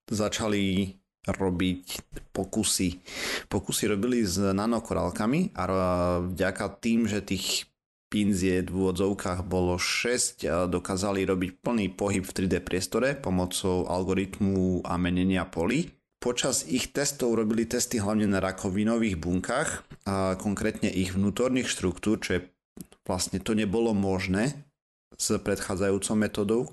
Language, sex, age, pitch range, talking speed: Slovak, male, 30-49, 90-105 Hz, 115 wpm